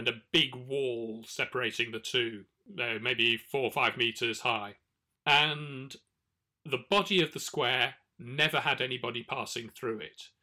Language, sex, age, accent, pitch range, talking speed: English, male, 40-59, British, 115-150 Hz, 145 wpm